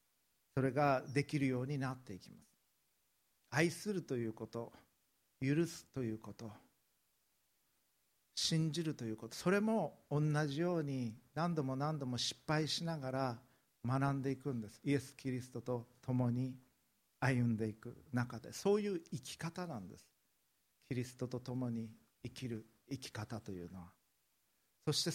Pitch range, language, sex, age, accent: 115-145 Hz, Japanese, male, 50-69, native